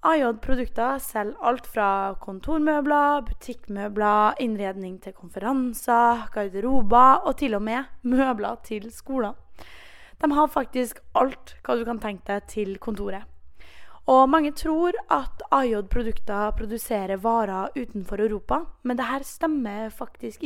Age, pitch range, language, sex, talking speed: 20-39, 210-270 Hz, English, female, 120 wpm